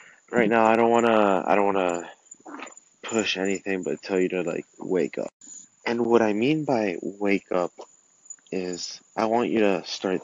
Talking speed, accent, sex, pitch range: 190 wpm, American, male, 95-125 Hz